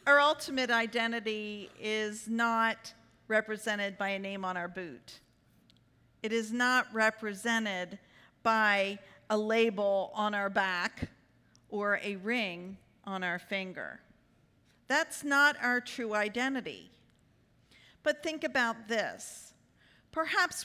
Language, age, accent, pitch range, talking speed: English, 50-69, American, 215-305 Hz, 110 wpm